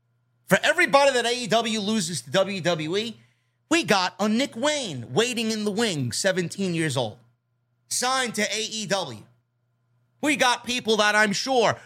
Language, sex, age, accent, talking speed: English, male, 30-49, American, 140 wpm